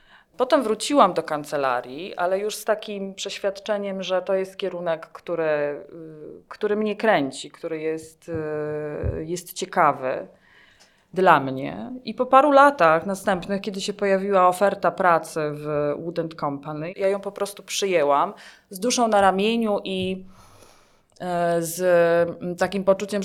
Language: Polish